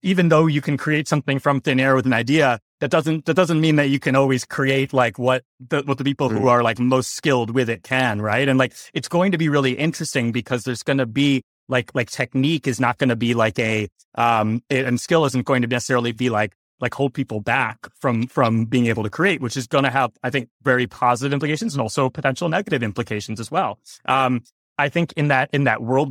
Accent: American